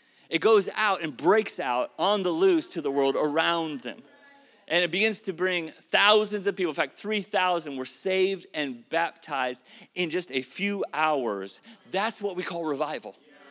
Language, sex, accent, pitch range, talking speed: English, male, American, 175-225 Hz, 175 wpm